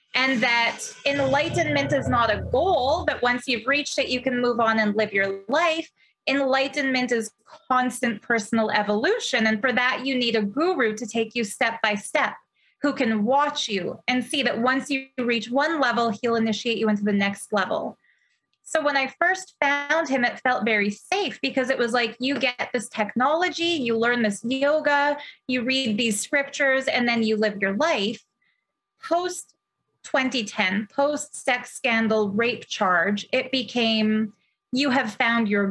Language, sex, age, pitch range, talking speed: English, female, 20-39, 220-270 Hz, 170 wpm